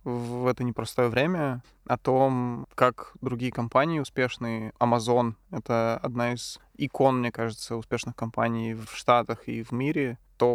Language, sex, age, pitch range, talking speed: Russian, male, 20-39, 115-130 Hz, 140 wpm